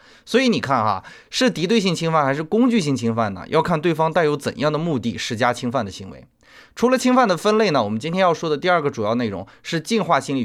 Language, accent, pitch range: Chinese, native, 125-210 Hz